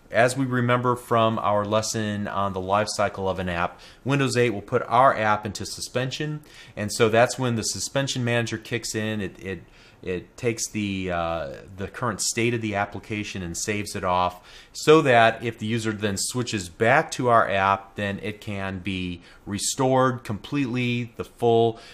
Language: English